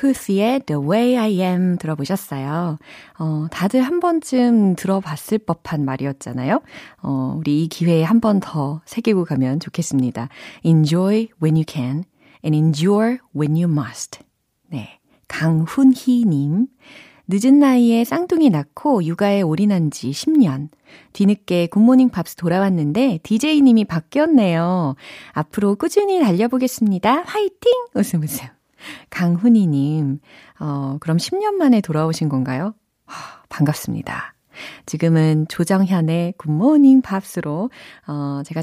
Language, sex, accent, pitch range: Korean, female, native, 150-230 Hz